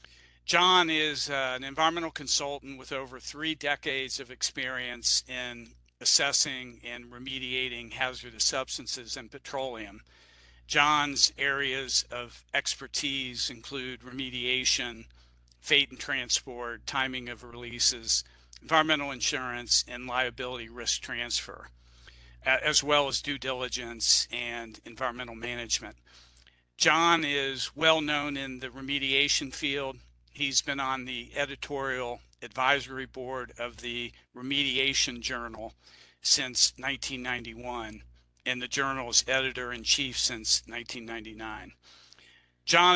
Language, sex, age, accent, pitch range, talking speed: English, male, 50-69, American, 115-135 Hz, 100 wpm